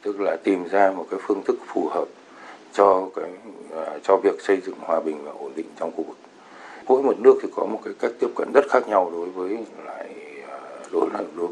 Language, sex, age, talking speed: Vietnamese, male, 60-79, 220 wpm